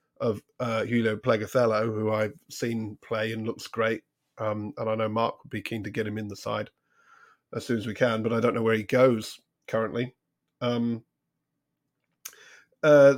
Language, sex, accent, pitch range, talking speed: English, male, British, 115-140 Hz, 180 wpm